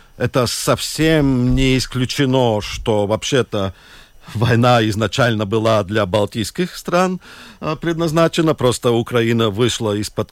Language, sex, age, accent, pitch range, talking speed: Russian, male, 50-69, native, 105-155 Hz, 100 wpm